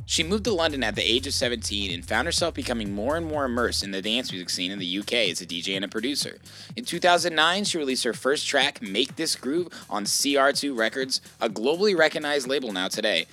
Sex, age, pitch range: male, 20-39, 95-155 Hz